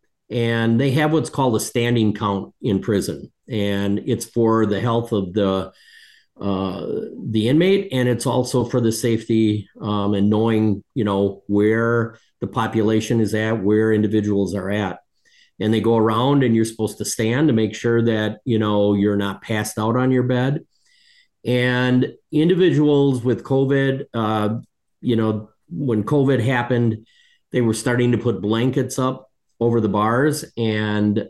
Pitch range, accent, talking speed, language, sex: 105-130 Hz, American, 160 wpm, English, male